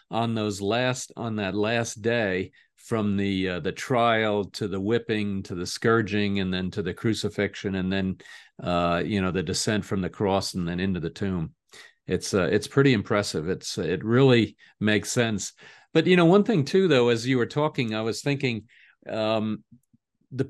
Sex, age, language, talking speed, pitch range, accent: male, 50-69, English, 190 wpm, 105-125 Hz, American